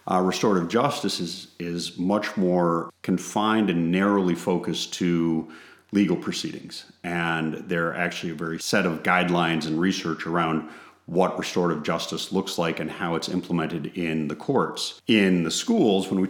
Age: 40-59